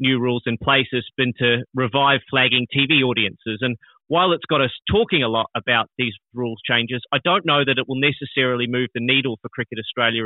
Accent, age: Australian, 30-49